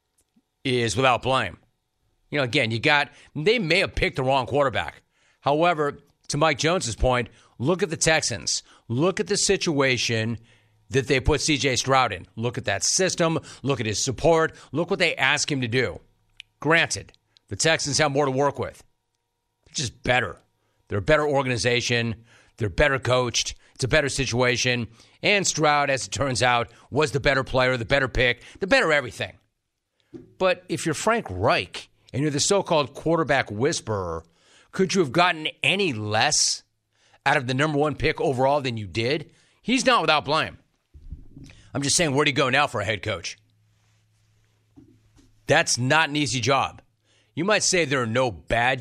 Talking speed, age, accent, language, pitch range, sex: 175 wpm, 40-59, American, English, 110-150 Hz, male